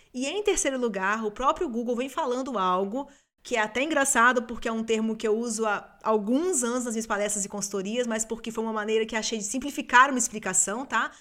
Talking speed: 220 wpm